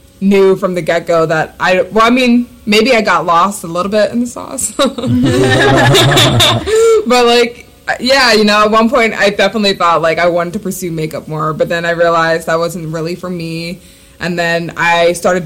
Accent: American